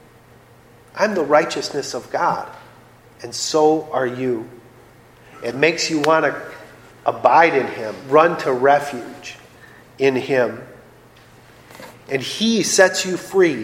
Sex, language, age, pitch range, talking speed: male, English, 40-59, 120-160 Hz, 120 wpm